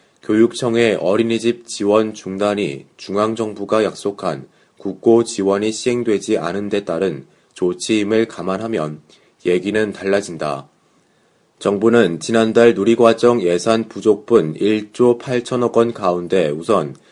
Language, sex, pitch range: Korean, male, 100-115 Hz